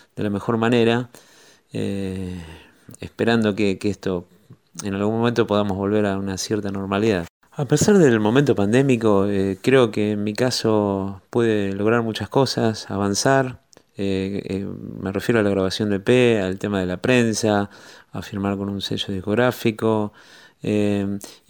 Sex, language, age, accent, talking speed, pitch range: male, Spanish, 30-49, Argentinian, 155 wpm, 100-115 Hz